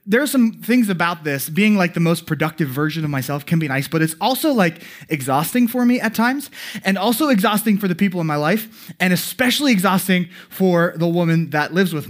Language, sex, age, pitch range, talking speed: English, male, 20-39, 145-195 Hz, 220 wpm